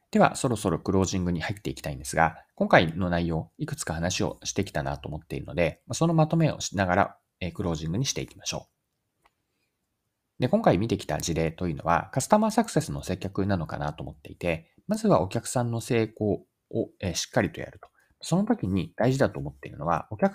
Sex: male